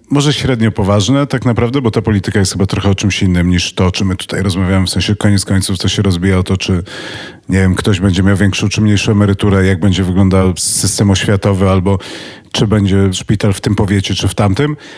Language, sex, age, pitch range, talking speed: Polish, male, 40-59, 95-115 Hz, 215 wpm